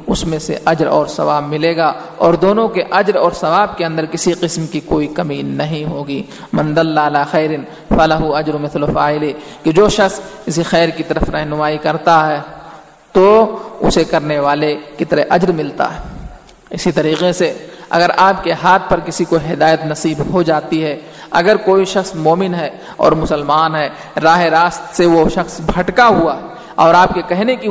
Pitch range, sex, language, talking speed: 155-180 Hz, male, Urdu, 180 wpm